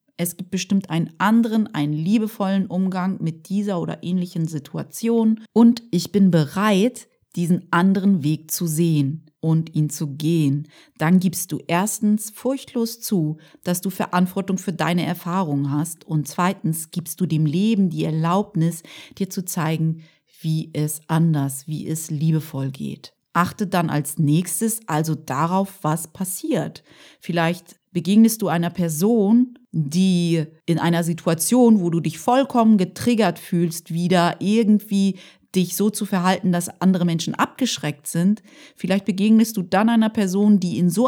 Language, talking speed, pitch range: German, 145 wpm, 165-210 Hz